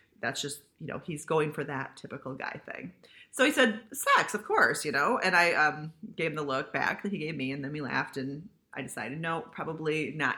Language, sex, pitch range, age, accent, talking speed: English, female, 150-220 Hz, 30-49, American, 235 wpm